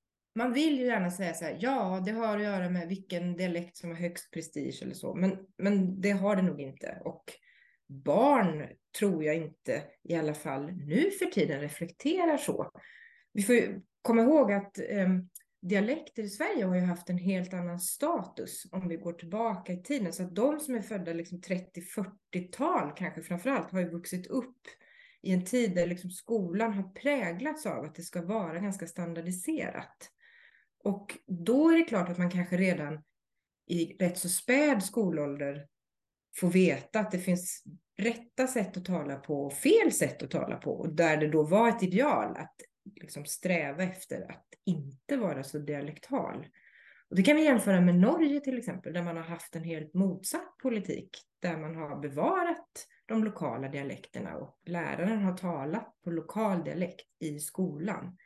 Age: 30-49